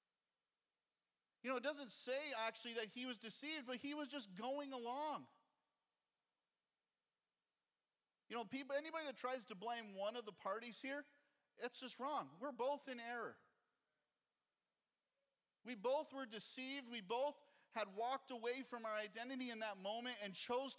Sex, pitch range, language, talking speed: male, 165-250 Hz, English, 150 wpm